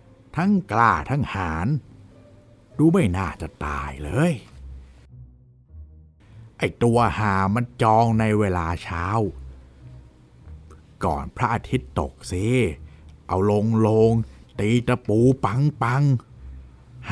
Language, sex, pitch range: Thai, male, 80-120 Hz